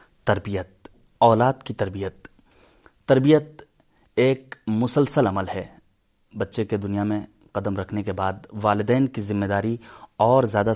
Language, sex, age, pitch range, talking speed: Urdu, male, 30-49, 105-130 Hz, 130 wpm